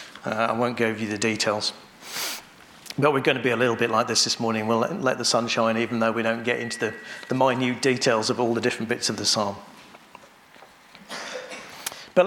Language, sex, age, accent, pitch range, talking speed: English, male, 50-69, British, 125-145 Hz, 215 wpm